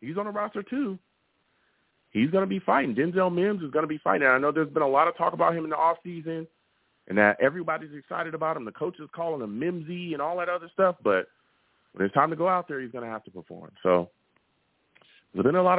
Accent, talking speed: American, 250 wpm